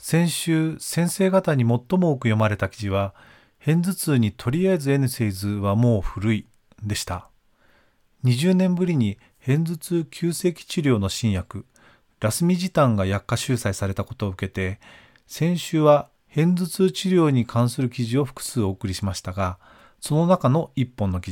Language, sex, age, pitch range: Japanese, male, 40-59, 105-155 Hz